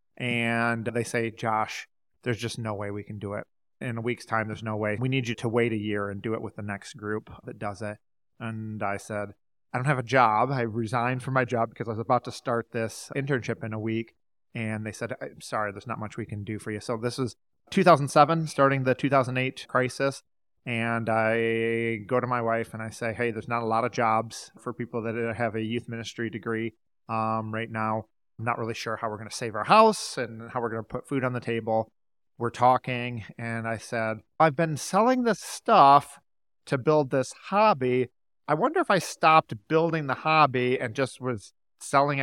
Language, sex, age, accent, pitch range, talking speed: English, male, 30-49, American, 110-125 Hz, 220 wpm